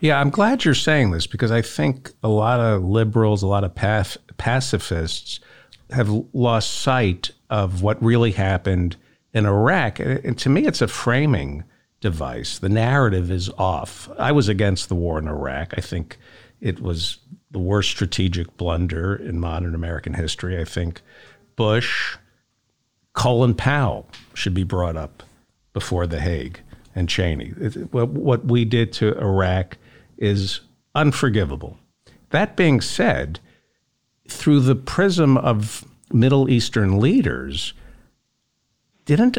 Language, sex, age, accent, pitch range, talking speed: English, male, 50-69, American, 90-125 Hz, 135 wpm